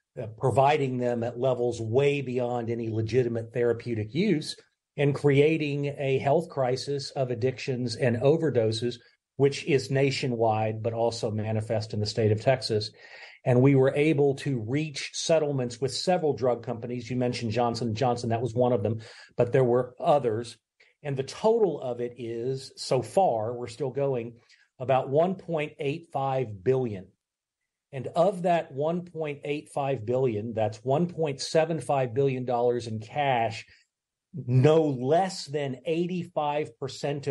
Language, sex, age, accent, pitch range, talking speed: English, male, 40-59, American, 120-145 Hz, 135 wpm